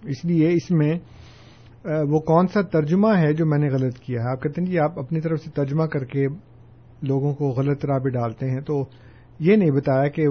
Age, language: 50-69, Urdu